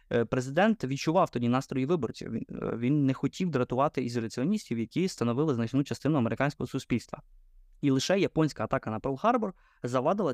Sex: male